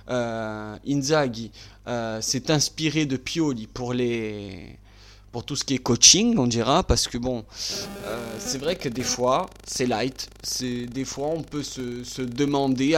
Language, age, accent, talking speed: French, 20-39, French, 165 wpm